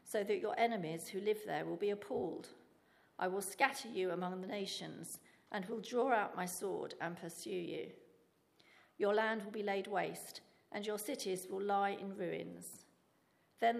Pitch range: 185-230 Hz